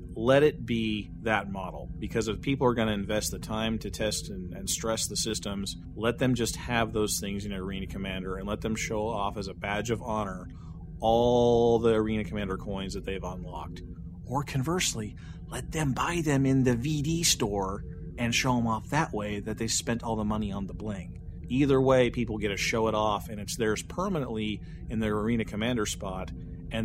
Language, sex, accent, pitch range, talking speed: English, male, American, 95-115 Hz, 205 wpm